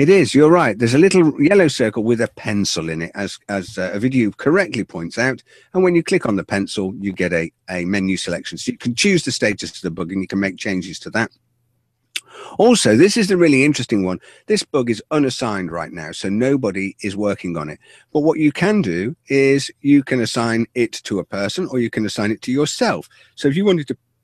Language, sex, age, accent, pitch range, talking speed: English, male, 50-69, British, 95-135 Hz, 235 wpm